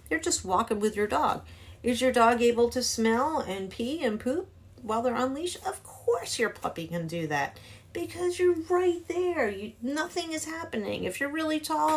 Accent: American